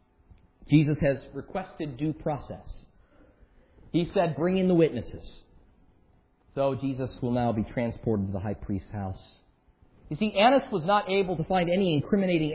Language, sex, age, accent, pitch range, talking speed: English, male, 40-59, American, 115-180 Hz, 155 wpm